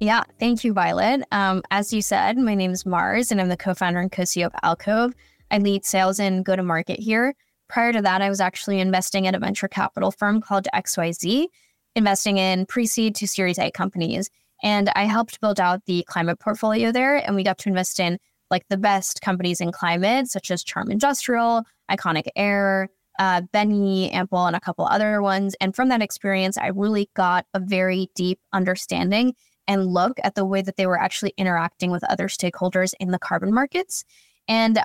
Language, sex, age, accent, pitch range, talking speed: English, female, 10-29, American, 185-210 Hz, 190 wpm